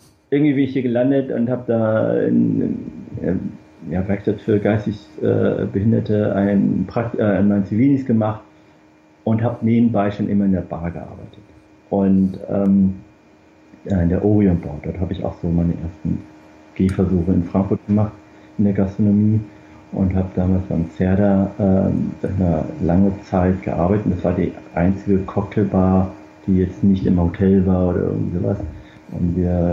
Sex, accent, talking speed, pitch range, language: male, German, 155 wpm, 90-110 Hz, German